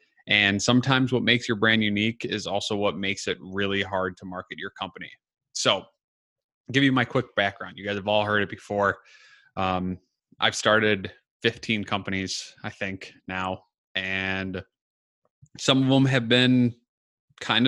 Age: 20-39